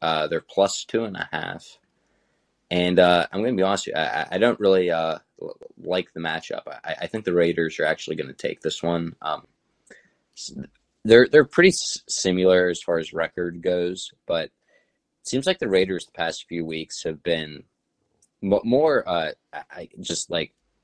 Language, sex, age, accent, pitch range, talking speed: English, male, 20-39, American, 80-90 Hz, 180 wpm